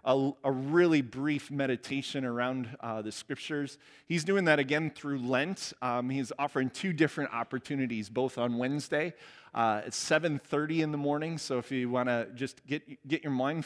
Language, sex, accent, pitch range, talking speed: English, male, American, 120-150 Hz, 175 wpm